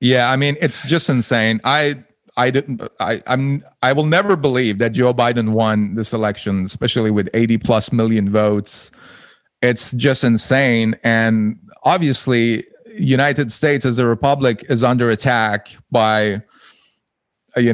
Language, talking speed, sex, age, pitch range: English, 140 wpm, male, 30-49, 115-140 Hz